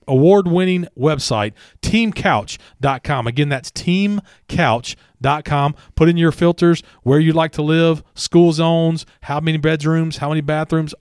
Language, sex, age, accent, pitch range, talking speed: English, male, 40-59, American, 135-170 Hz, 125 wpm